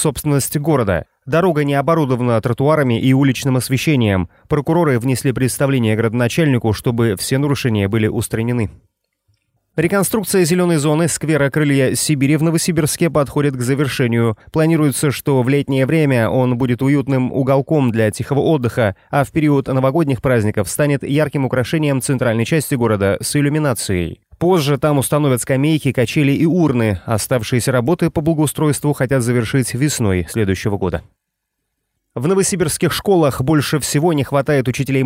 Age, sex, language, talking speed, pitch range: 30-49, male, Russian, 130 wpm, 120-155 Hz